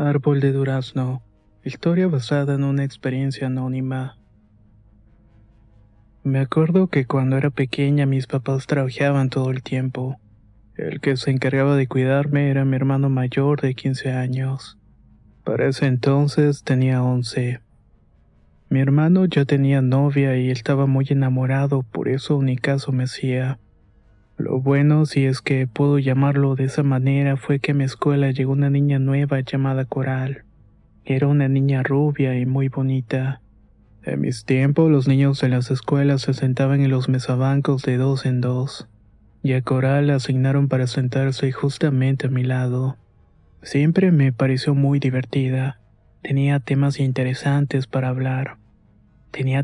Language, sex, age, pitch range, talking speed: Spanish, male, 20-39, 130-140 Hz, 145 wpm